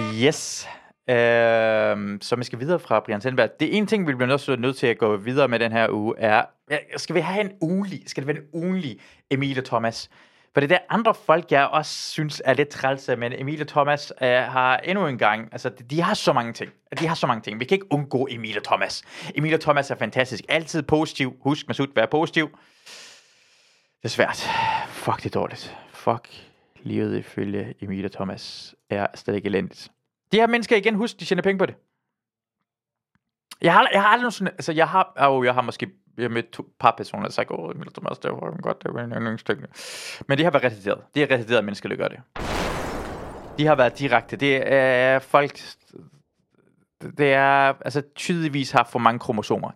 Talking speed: 205 wpm